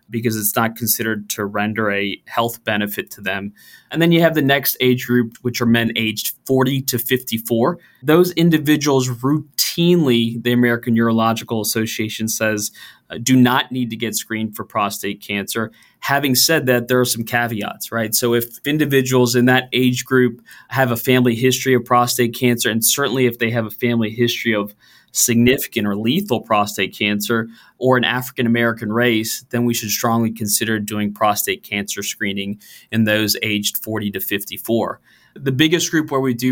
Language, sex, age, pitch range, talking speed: English, male, 20-39, 110-125 Hz, 175 wpm